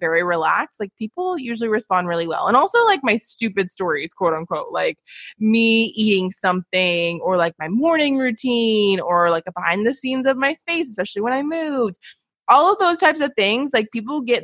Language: English